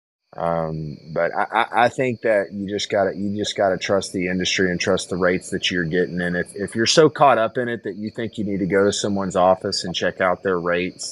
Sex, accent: male, American